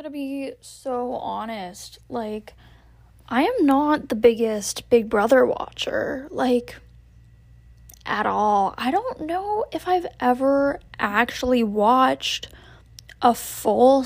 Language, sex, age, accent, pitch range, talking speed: English, female, 10-29, American, 230-280 Hz, 110 wpm